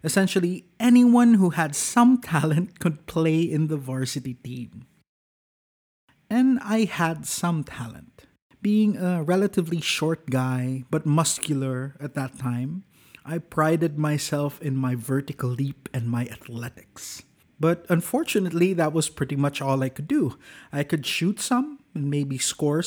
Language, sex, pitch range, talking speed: English, male, 135-185 Hz, 140 wpm